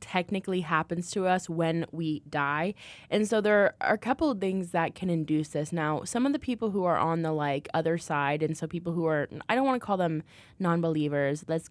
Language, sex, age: English, female, 10-29